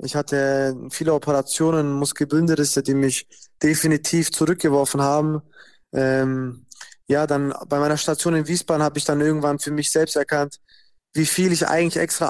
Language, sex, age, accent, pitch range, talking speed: German, male, 20-39, German, 140-155 Hz, 150 wpm